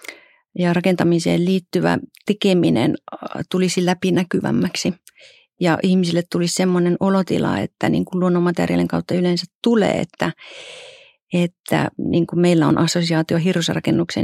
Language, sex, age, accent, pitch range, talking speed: Finnish, female, 40-59, native, 165-190 Hz, 105 wpm